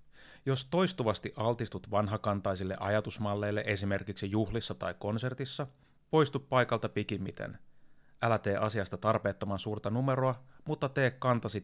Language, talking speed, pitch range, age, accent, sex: Finnish, 110 wpm, 100-125 Hz, 30-49, native, male